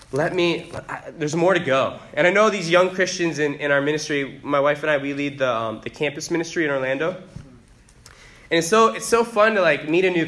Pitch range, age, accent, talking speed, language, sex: 135-180 Hz, 20-39, American, 235 wpm, English, male